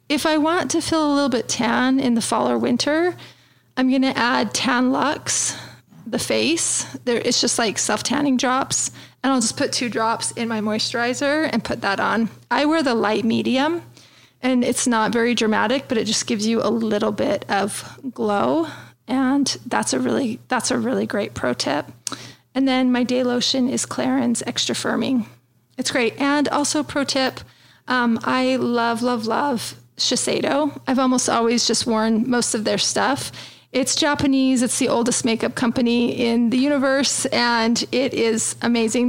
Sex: female